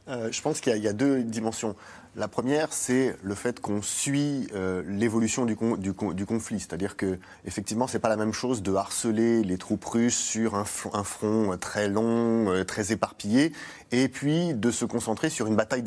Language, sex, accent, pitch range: French, male, French, 105-135 Hz